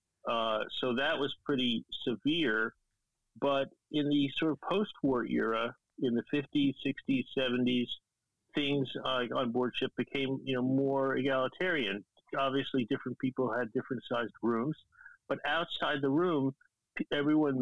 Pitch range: 115-135 Hz